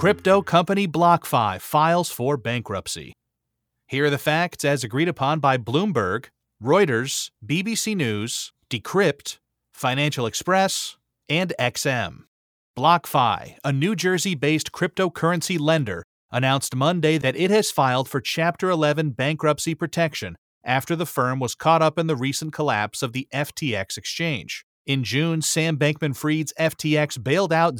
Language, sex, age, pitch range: English, male, 30-49, 125-160 Hz